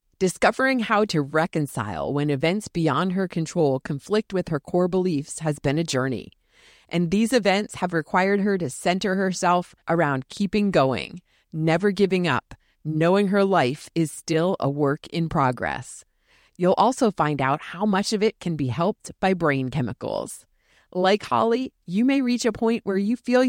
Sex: female